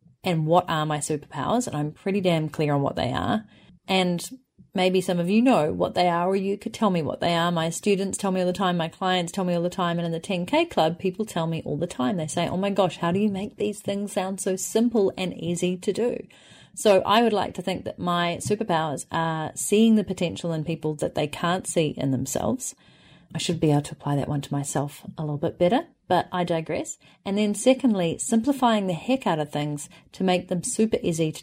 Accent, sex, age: Australian, female, 30-49